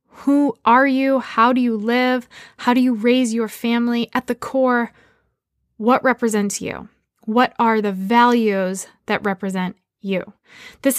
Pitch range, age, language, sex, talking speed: 210-255 Hz, 20-39, English, female, 145 wpm